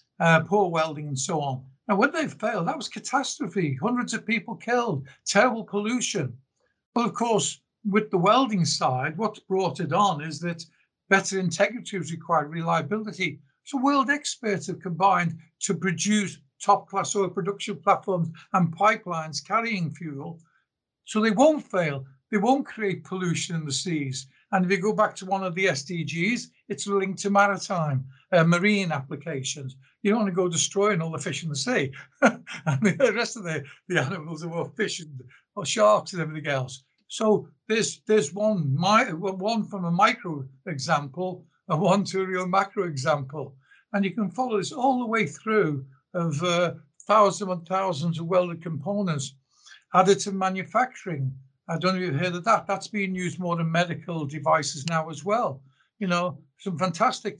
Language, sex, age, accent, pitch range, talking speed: English, male, 60-79, British, 155-205 Hz, 175 wpm